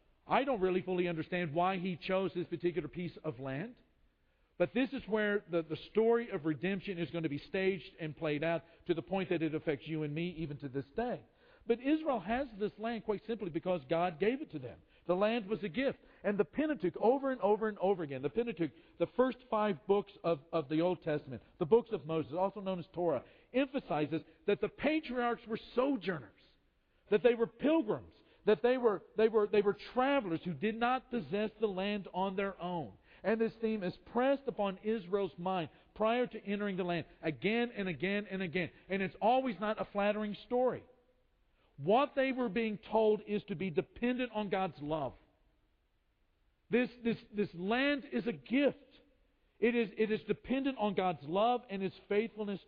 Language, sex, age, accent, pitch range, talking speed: English, male, 50-69, American, 170-230 Hz, 195 wpm